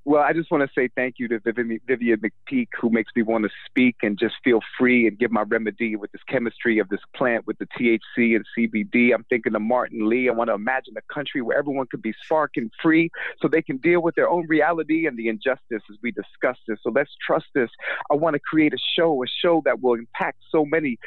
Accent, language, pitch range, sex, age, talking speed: American, English, 120-155 Hz, male, 30-49, 245 wpm